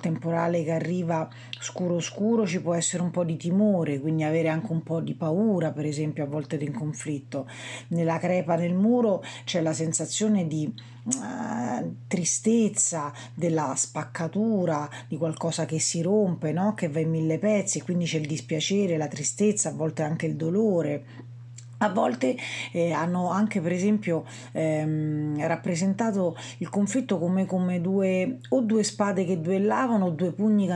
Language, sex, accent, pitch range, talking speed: Italian, female, native, 160-200 Hz, 160 wpm